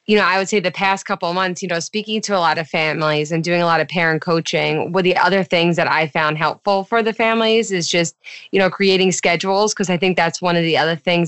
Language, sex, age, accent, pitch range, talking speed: English, female, 20-39, American, 160-195 Hz, 270 wpm